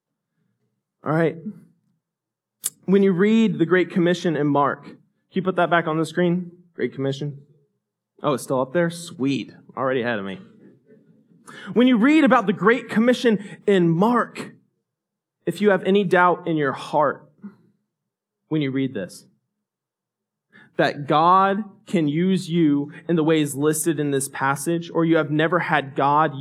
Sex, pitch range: male, 165-210 Hz